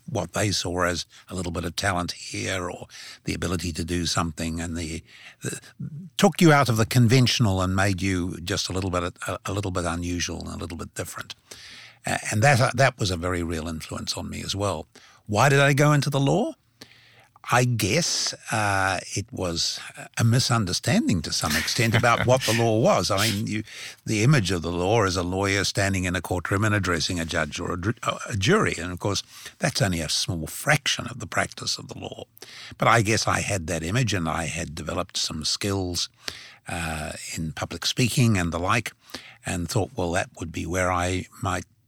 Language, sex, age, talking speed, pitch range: English, male, 60-79, 200 wpm, 85-115 Hz